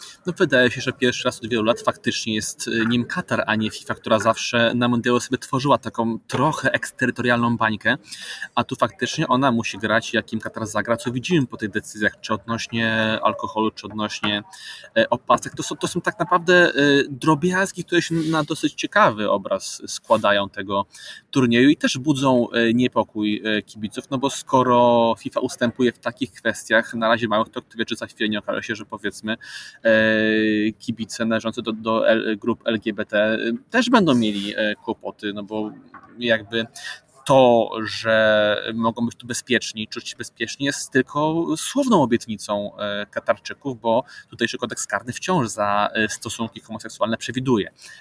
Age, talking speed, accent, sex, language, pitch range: 20-39, 150 wpm, native, male, Polish, 110-130 Hz